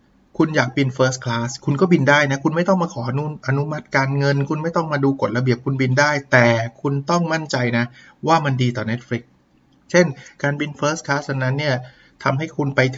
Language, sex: Thai, male